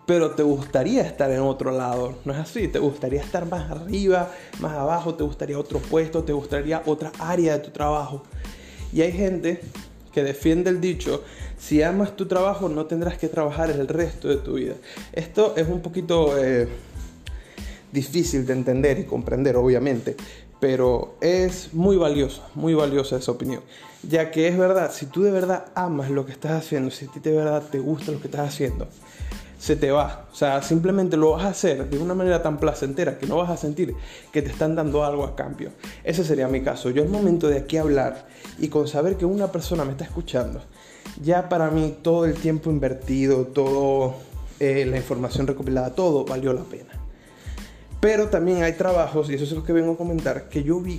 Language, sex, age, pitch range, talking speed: Spanish, male, 20-39, 140-175 Hz, 200 wpm